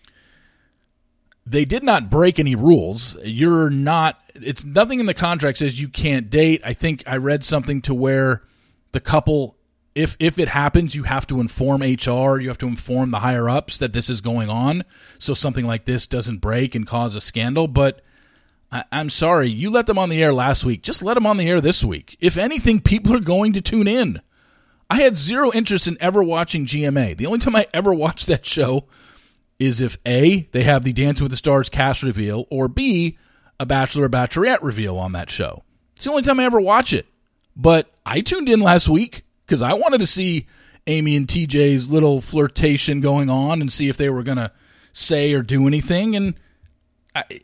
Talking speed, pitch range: 200 wpm, 125-170 Hz